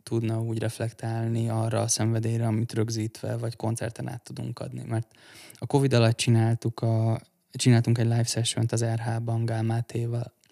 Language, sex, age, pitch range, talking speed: Hungarian, male, 20-39, 115-120 Hz, 150 wpm